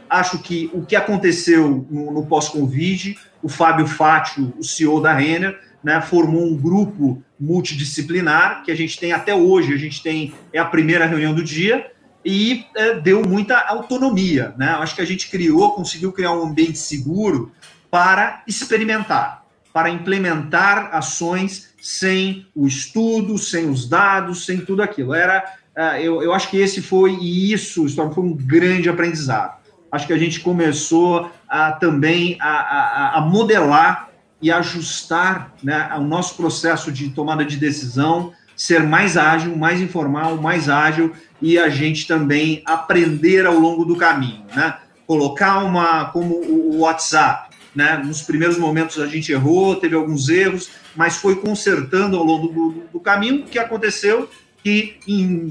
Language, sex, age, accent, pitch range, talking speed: Portuguese, male, 40-59, Brazilian, 155-190 Hz, 155 wpm